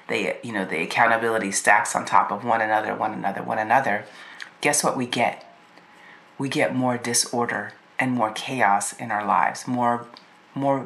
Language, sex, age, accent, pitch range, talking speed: English, female, 30-49, American, 115-130 Hz, 170 wpm